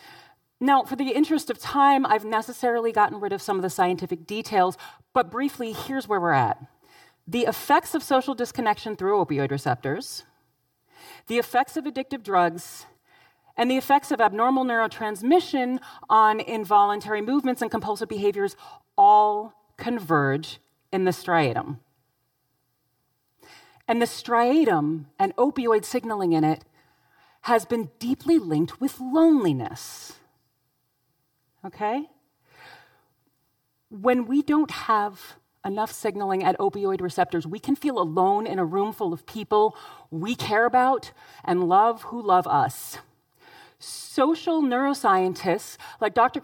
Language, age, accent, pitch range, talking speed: English, 40-59, American, 195-295 Hz, 125 wpm